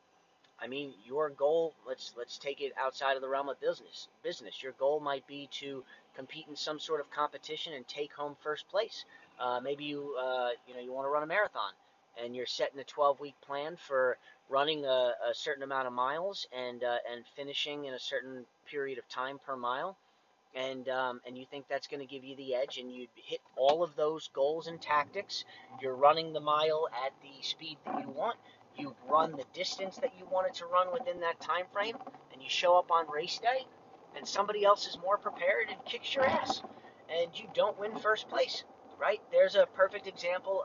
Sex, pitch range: male, 140-205 Hz